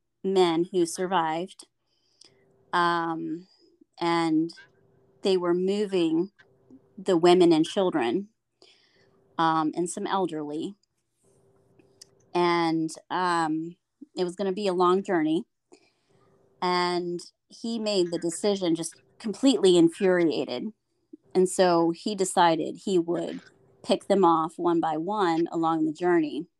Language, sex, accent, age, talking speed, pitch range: English, female, American, 30-49, 110 wpm, 165-205 Hz